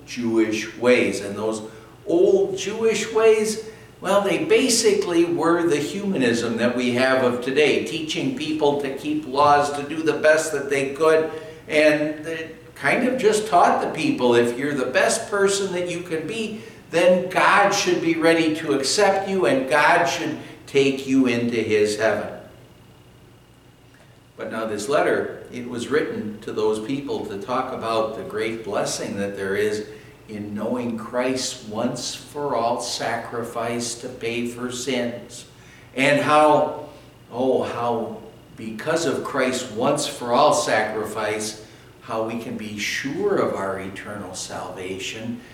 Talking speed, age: 150 wpm, 60-79